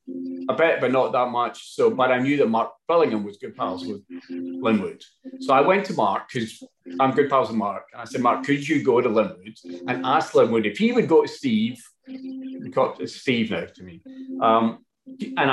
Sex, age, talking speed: male, 40-59, 210 wpm